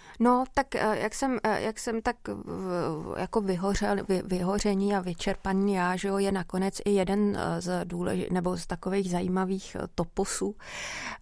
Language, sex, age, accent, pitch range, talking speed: Czech, female, 30-49, native, 180-200 Hz, 140 wpm